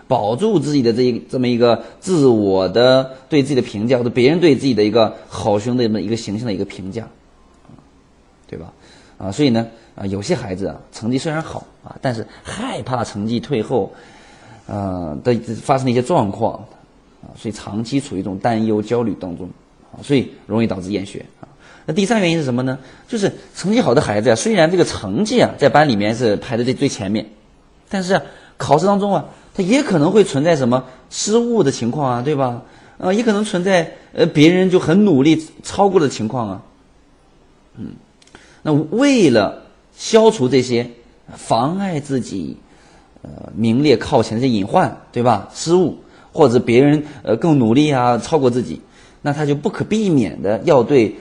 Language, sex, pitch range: Chinese, male, 110-150 Hz